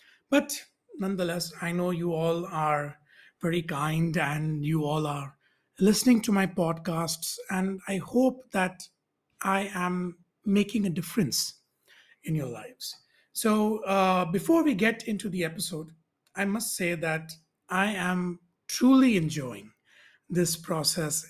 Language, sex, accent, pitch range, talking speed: English, male, Indian, 160-200 Hz, 130 wpm